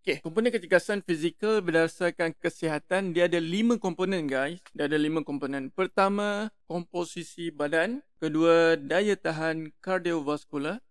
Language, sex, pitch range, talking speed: Malay, male, 160-190 Hz, 120 wpm